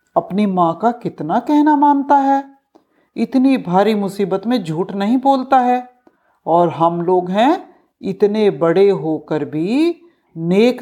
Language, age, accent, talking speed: Hindi, 50-69, native, 135 wpm